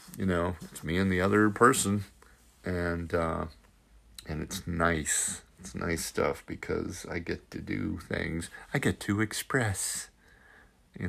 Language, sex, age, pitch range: English, male, 50-69, 85-100 Hz